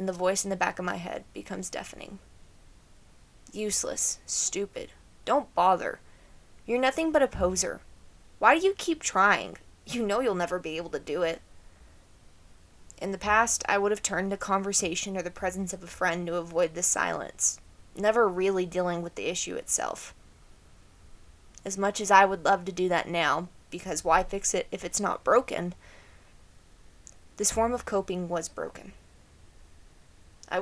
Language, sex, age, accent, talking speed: English, female, 20-39, American, 165 wpm